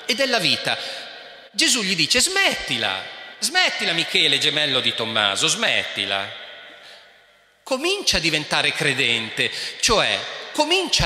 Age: 40-59